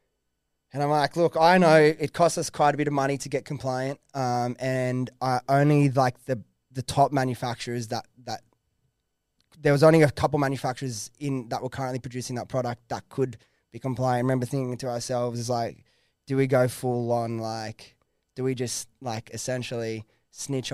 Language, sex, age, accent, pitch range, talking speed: English, male, 20-39, Australian, 120-140 Hz, 185 wpm